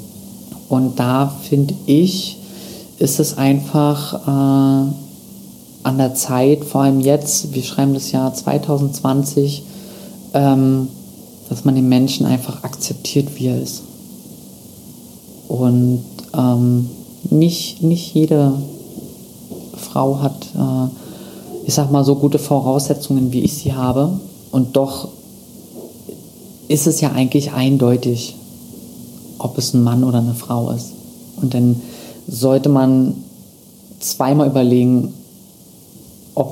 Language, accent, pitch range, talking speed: German, German, 125-145 Hz, 115 wpm